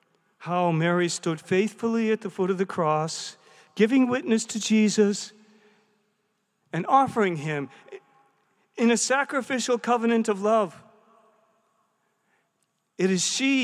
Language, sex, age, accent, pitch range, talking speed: English, male, 40-59, American, 185-230 Hz, 115 wpm